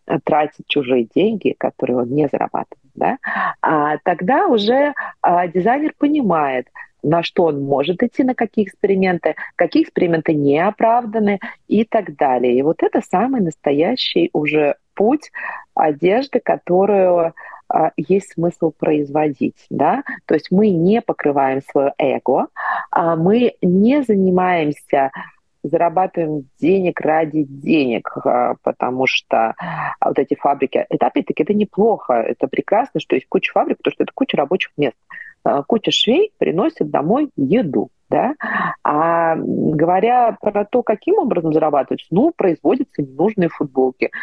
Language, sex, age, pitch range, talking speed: Russian, female, 40-59, 150-215 Hz, 125 wpm